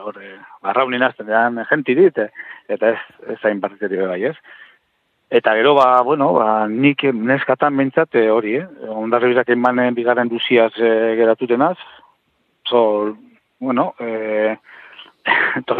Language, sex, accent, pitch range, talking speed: Spanish, male, Spanish, 115-135 Hz, 105 wpm